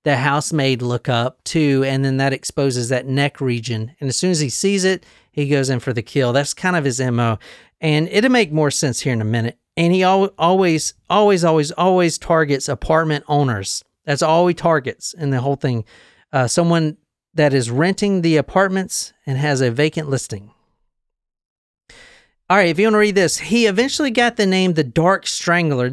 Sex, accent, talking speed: male, American, 195 wpm